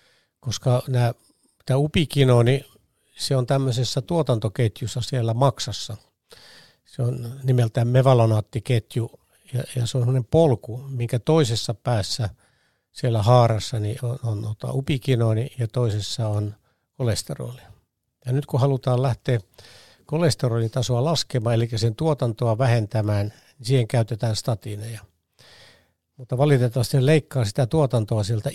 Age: 60-79